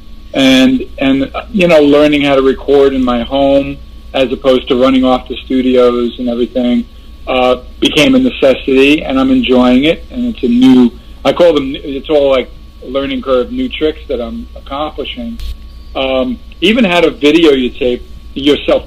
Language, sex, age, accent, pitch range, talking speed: English, male, 50-69, American, 120-145 Hz, 170 wpm